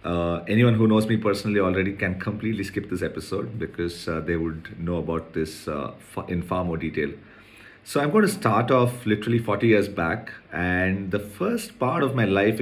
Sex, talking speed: male, 195 wpm